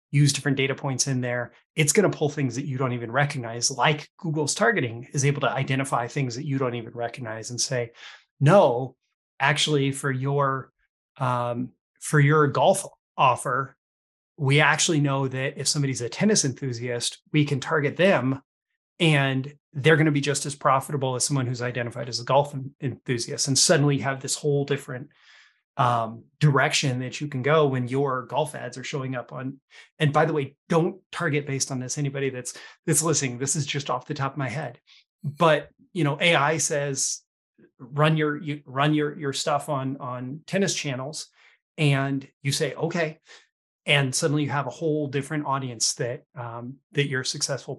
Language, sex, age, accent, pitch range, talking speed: English, male, 30-49, American, 130-150 Hz, 185 wpm